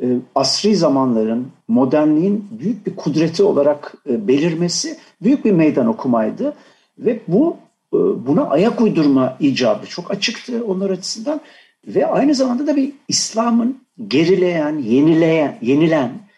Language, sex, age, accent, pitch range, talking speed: Turkish, male, 60-79, native, 150-245 Hz, 115 wpm